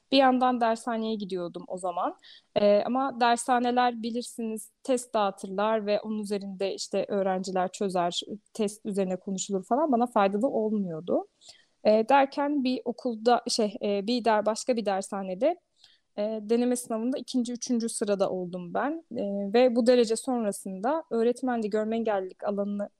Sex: female